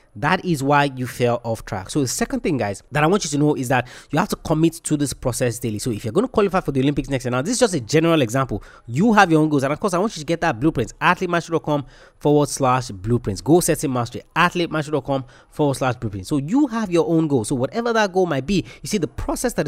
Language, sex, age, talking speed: English, male, 30-49, 270 wpm